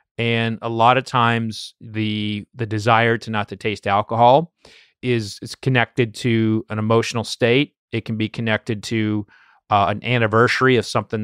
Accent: American